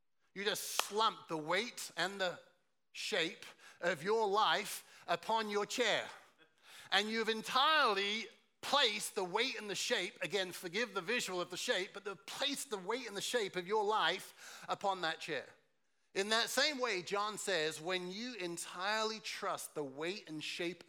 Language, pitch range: English, 175-220 Hz